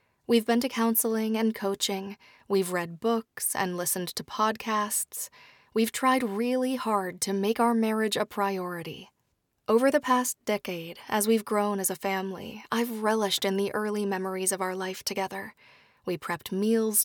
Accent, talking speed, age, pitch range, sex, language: American, 160 wpm, 20-39, 195-230 Hz, female, English